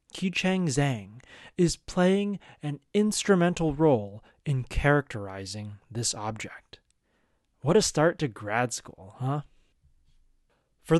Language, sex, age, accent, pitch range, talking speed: English, male, 30-49, American, 120-175 Hz, 110 wpm